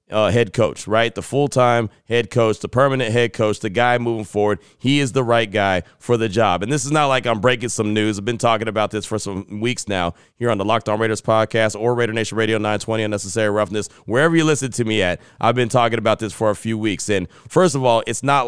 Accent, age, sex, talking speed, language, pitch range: American, 30-49, male, 245 wpm, English, 110-130 Hz